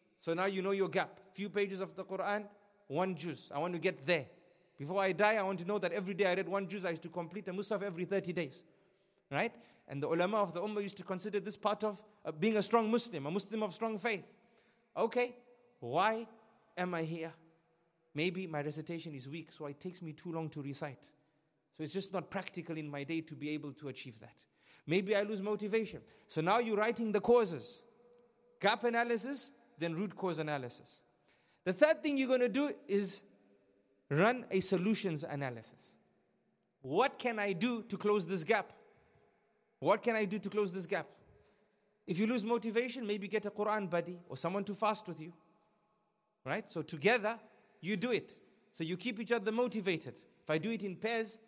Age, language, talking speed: 30-49, English, 200 wpm